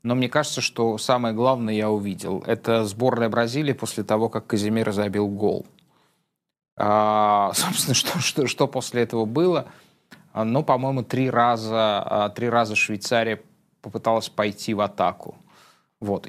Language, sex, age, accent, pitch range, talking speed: Russian, male, 20-39, native, 110-135 Hz, 130 wpm